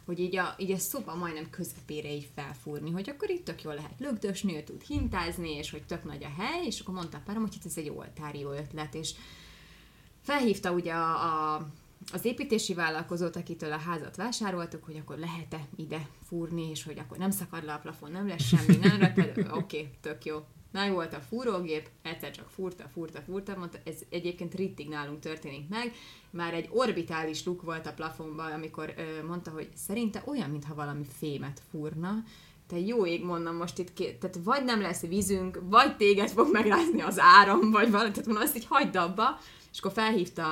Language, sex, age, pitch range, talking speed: Hungarian, female, 20-39, 155-205 Hz, 195 wpm